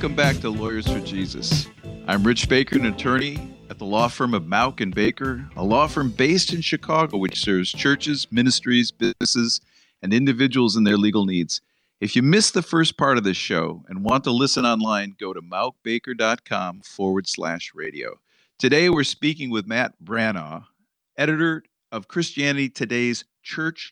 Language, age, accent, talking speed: English, 50-69, American, 170 wpm